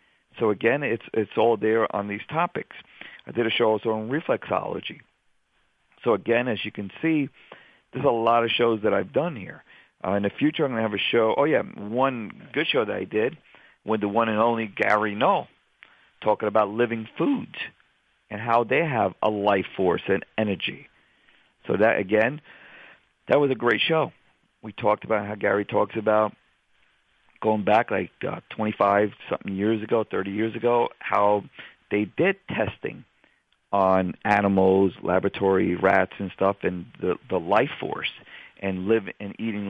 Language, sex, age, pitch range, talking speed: English, male, 50-69, 100-115 Hz, 175 wpm